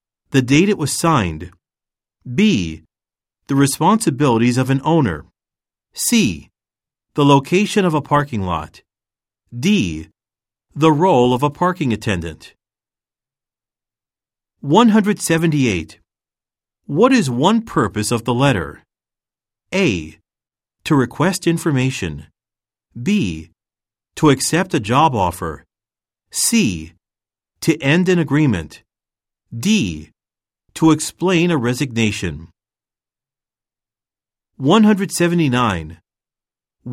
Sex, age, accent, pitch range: male, 40-59, American, 100-155 Hz